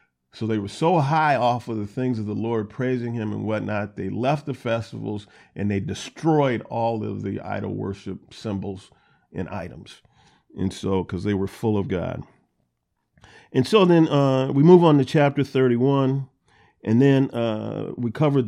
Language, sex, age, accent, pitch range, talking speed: English, male, 40-59, American, 100-120 Hz, 175 wpm